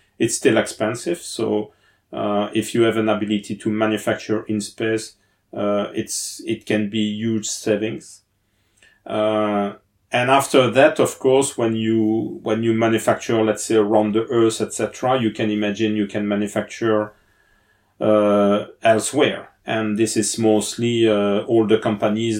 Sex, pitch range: male, 105-110 Hz